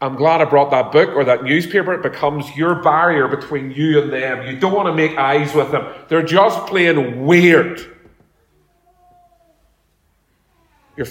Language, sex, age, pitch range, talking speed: English, male, 40-59, 155-205 Hz, 160 wpm